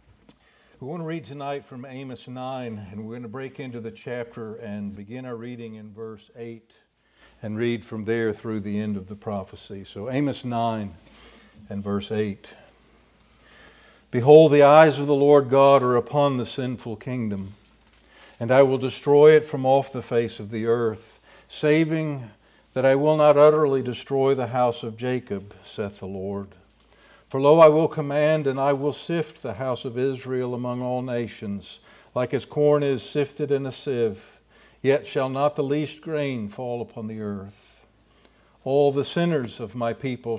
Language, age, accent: English, 60-79, American